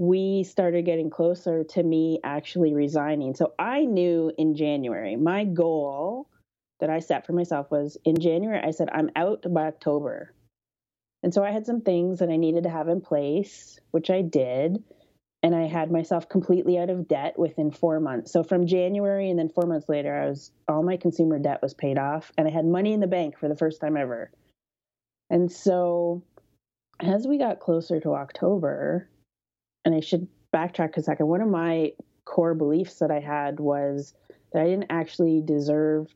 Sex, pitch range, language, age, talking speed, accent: female, 155-180 Hz, English, 30-49, 190 wpm, American